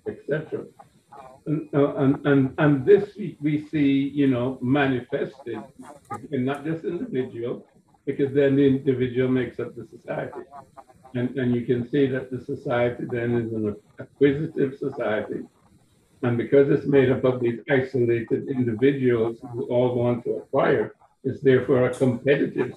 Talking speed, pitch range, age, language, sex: 150 wpm, 125-145 Hz, 60-79, English, male